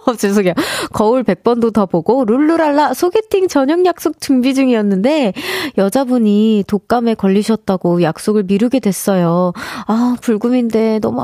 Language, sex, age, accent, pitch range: Korean, female, 20-39, native, 200-280 Hz